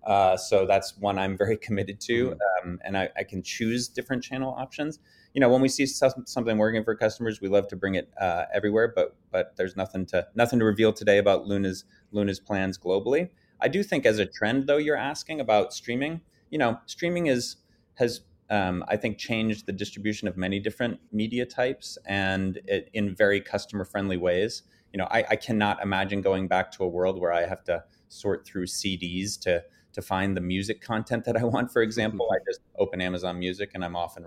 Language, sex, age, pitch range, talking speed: English, male, 30-49, 95-115 Hz, 210 wpm